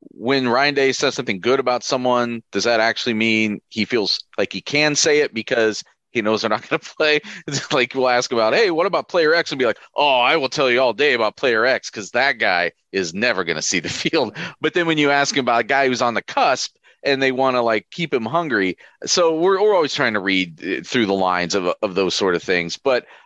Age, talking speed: 30-49, 255 wpm